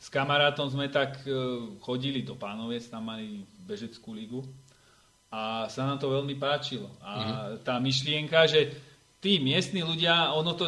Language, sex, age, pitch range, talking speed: Slovak, male, 30-49, 125-150 Hz, 145 wpm